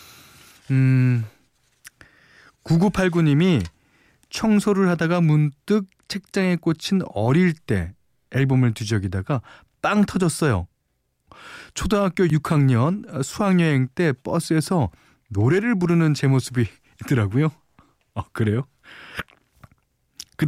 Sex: male